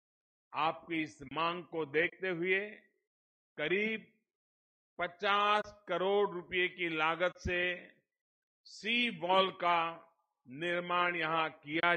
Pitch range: 150-205 Hz